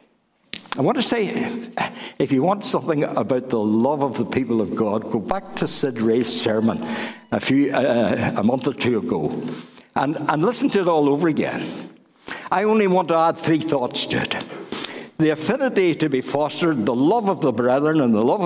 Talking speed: 195 wpm